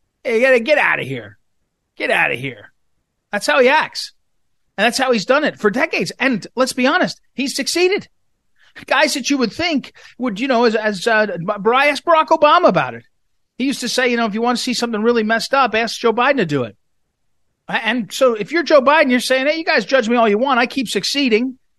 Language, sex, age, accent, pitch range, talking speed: English, male, 40-59, American, 175-245 Hz, 235 wpm